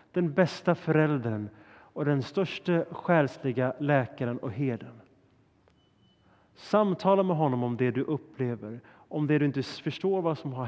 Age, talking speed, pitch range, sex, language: 30-49, 140 wpm, 120-160 Hz, male, Swedish